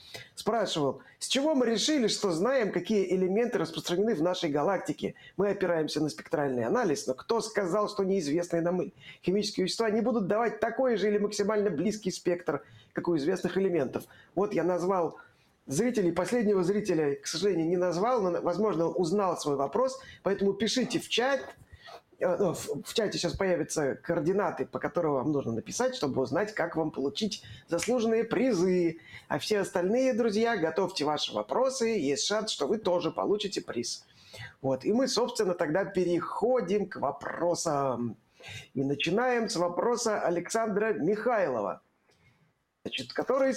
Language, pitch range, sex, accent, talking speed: Russian, 165-220 Hz, male, native, 140 wpm